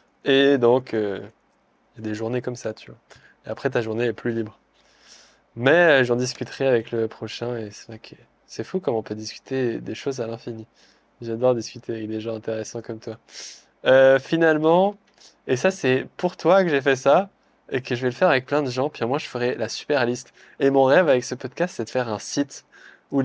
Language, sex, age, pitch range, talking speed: French, male, 20-39, 115-140 Hz, 225 wpm